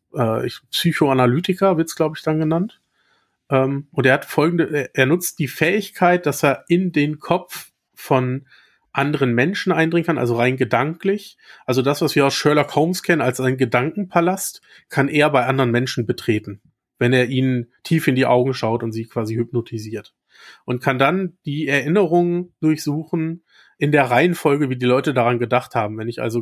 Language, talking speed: German, 170 wpm